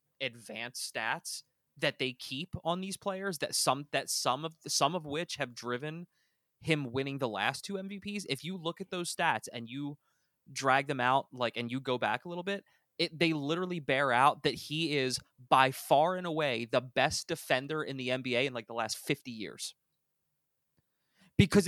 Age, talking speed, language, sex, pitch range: 20-39, 195 wpm, English, male, 130-175 Hz